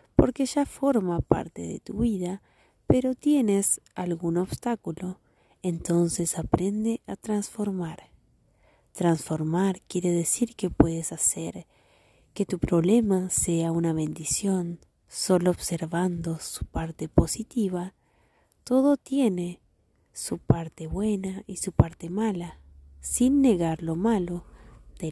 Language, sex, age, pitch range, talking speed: Spanish, female, 30-49, 165-210 Hz, 110 wpm